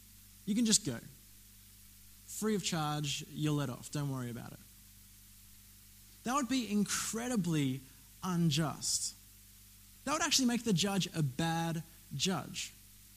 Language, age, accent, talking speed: English, 20-39, Australian, 130 wpm